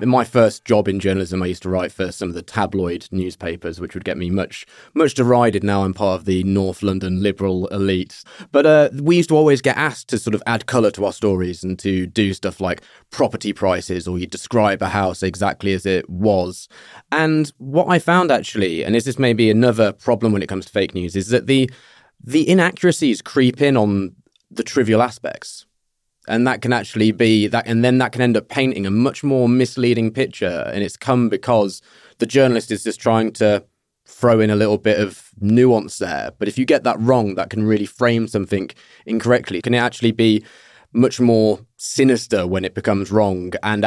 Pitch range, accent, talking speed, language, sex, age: 95-120 Hz, British, 210 wpm, English, male, 20-39